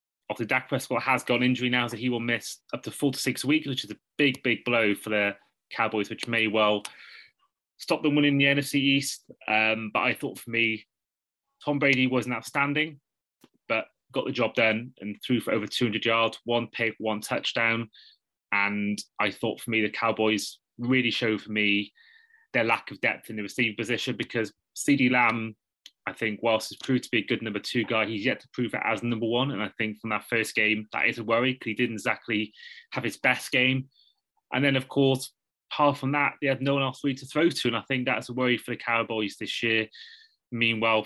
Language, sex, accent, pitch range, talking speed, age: English, male, British, 110-130 Hz, 220 wpm, 20-39